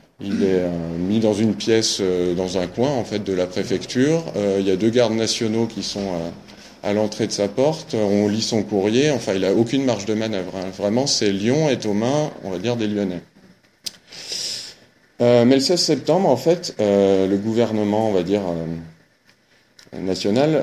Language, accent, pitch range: French, French, 100-120 Hz